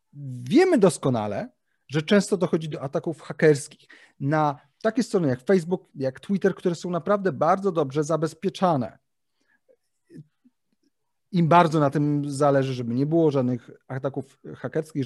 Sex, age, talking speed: male, 40-59, 130 wpm